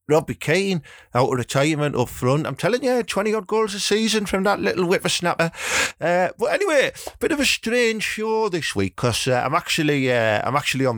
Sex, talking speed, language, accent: male, 210 wpm, English, British